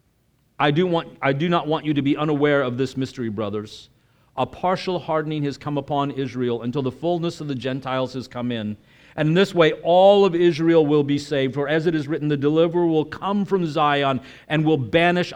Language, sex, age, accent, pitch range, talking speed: English, male, 50-69, American, 135-175 Hz, 215 wpm